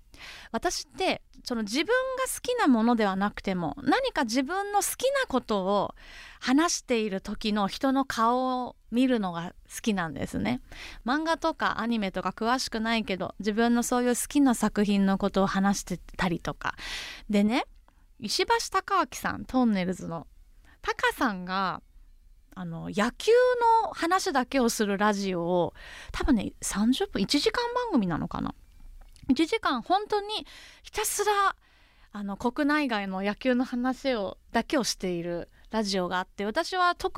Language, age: Japanese, 20-39